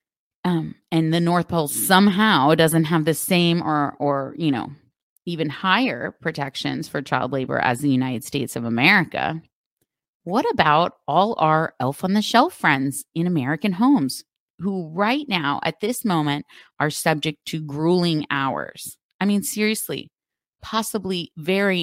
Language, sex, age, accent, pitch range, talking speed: English, female, 30-49, American, 150-205 Hz, 150 wpm